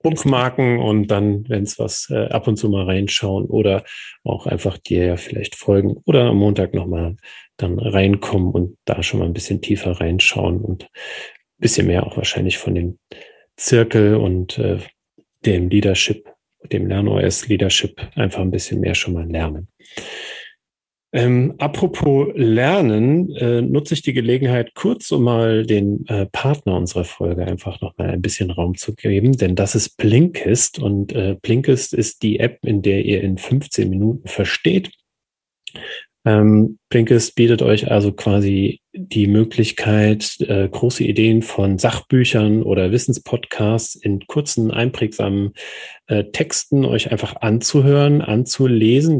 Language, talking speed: German, 145 wpm